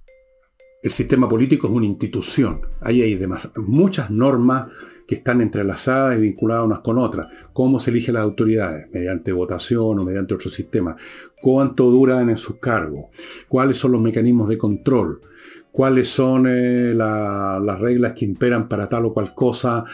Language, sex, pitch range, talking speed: Spanish, male, 95-125 Hz, 160 wpm